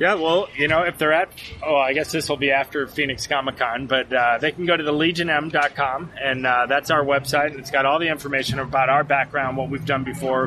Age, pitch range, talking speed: 30-49, 120-140 Hz, 235 wpm